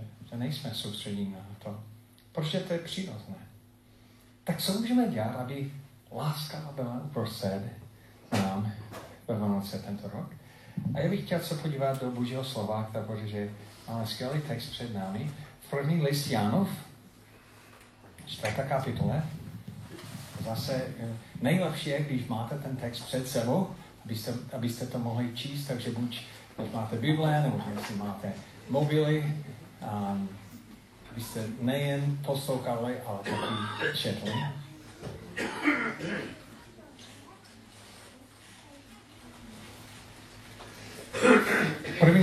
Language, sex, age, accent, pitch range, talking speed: Czech, male, 40-59, native, 110-140 Hz, 100 wpm